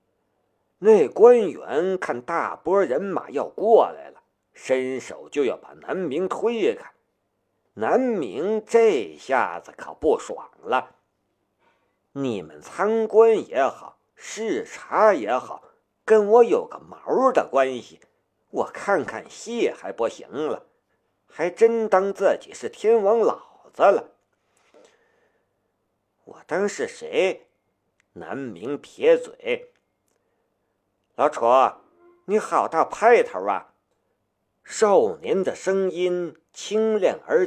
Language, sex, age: Chinese, male, 50-69